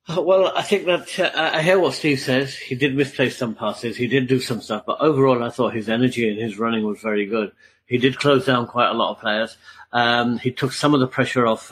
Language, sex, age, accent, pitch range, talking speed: English, male, 50-69, British, 115-140 Hz, 250 wpm